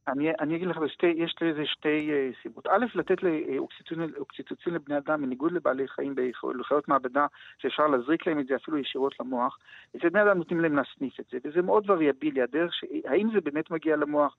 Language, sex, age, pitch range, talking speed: Hebrew, male, 50-69, 140-190 Hz, 190 wpm